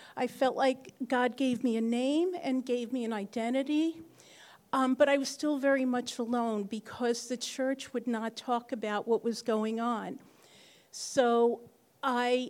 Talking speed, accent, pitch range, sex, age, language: 165 wpm, American, 230-270 Hz, female, 50-69, English